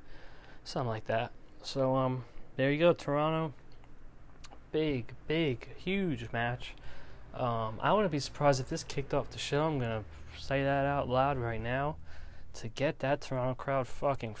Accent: American